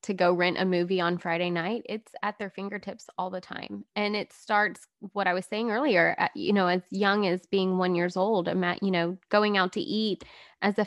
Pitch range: 185-215 Hz